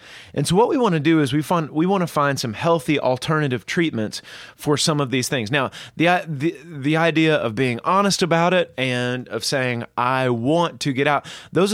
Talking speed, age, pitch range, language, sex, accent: 210 wpm, 30-49, 125-165 Hz, English, male, American